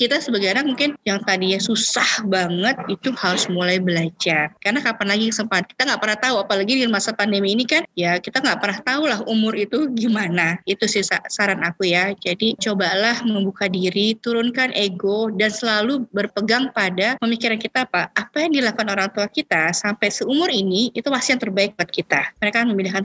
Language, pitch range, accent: Indonesian, 195-250 Hz, native